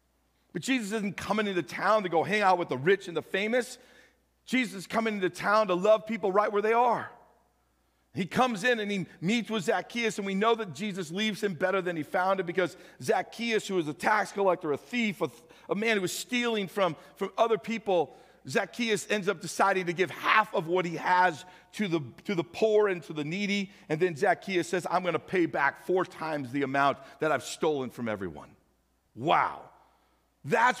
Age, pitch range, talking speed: 50-69, 165-215 Hz, 205 wpm